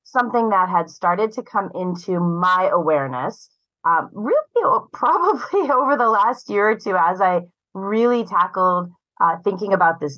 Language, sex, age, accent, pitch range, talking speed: English, female, 30-49, American, 160-215 Hz, 155 wpm